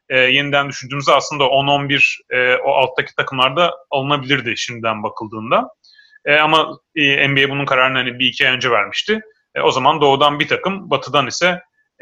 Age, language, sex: 30-49, Turkish, male